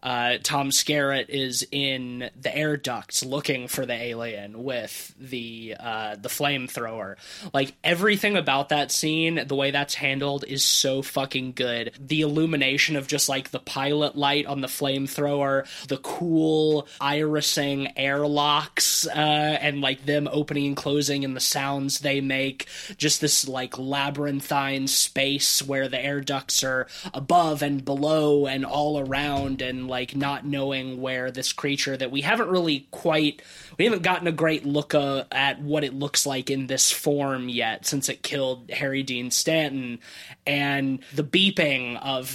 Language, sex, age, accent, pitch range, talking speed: English, male, 20-39, American, 130-150 Hz, 160 wpm